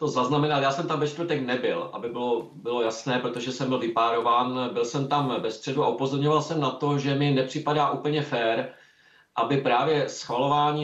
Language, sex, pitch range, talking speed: Czech, male, 125-150 Hz, 190 wpm